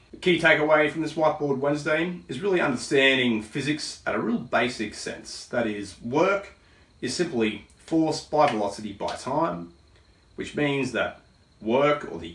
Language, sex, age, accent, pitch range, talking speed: English, male, 30-49, Australian, 105-150 Hz, 155 wpm